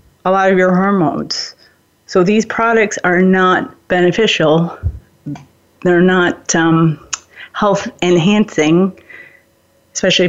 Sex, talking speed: female, 95 wpm